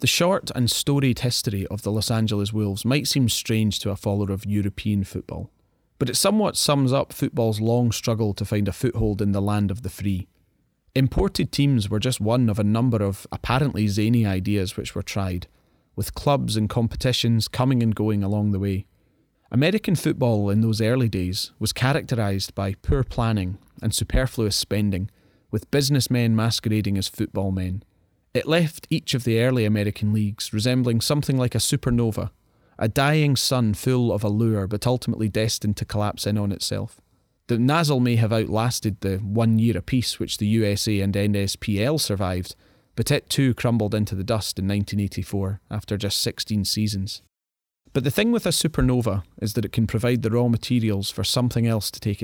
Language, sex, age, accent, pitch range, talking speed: English, male, 30-49, British, 100-125 Hz, 180 wpm